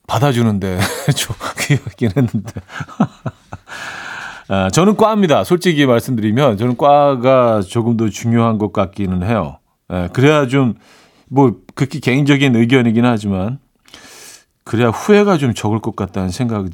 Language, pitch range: Korean, 105-150 Hz